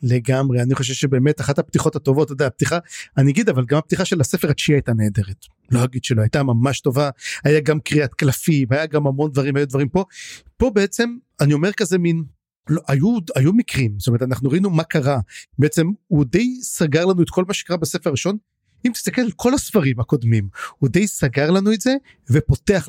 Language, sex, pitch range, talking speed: Hebrew, male, 130-180 Hz, 195 wpm